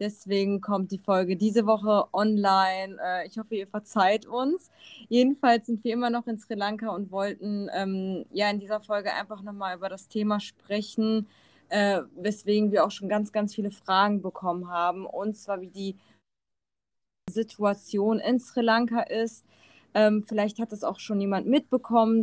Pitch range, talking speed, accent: 190-220 Hz, 165 wpm, German